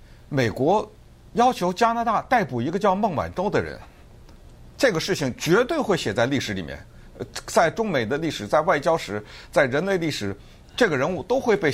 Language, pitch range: Chinese, 115-185 Hz